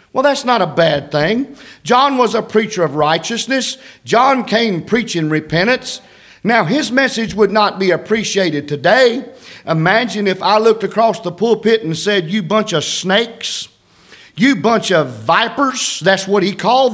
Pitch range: 195-250 Hz